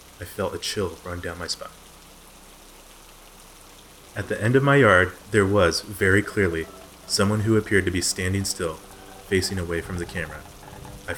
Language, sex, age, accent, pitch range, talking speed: English, male, 30-49, American, 90-105 Hz, 165 wpm